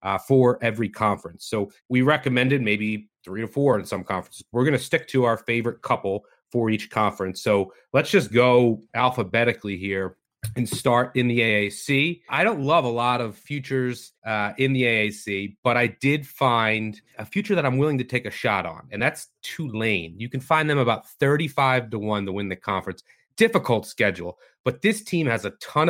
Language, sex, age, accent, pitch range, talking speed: English, male, 30-49, American, 110-135 Hz, 195 wpm